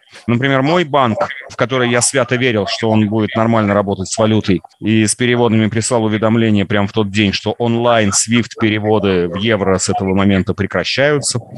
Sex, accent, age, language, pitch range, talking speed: male, native, 30-49, Russian, 110-140 Hz, 165 wpm